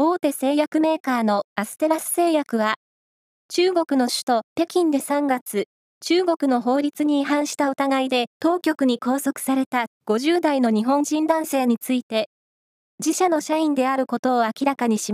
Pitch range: 245-315 Hz